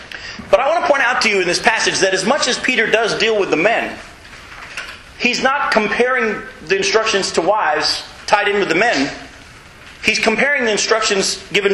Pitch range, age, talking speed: 180-225 Hz, 40-59, 195 wpm